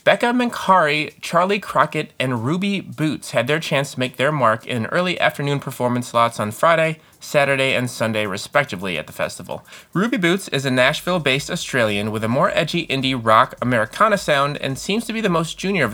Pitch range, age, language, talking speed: 120-165 Hz, 30-49, English, 190 wpm